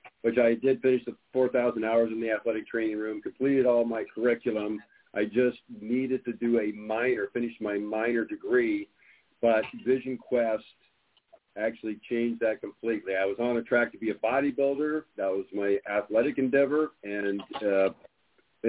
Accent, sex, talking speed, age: American, male, 160 wpm, 50-69